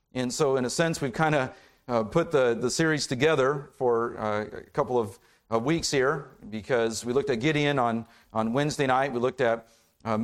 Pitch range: 120-155 Hz